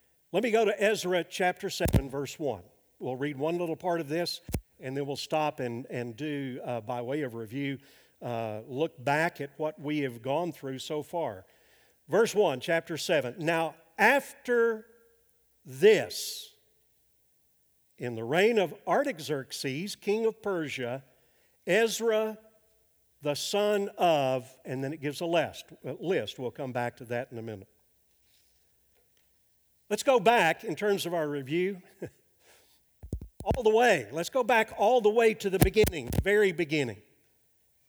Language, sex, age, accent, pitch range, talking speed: English, male, 50-69, American, 140-205 Hz, 150 wpm